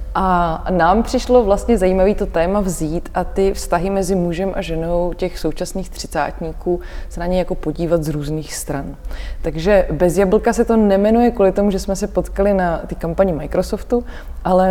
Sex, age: female, 20-39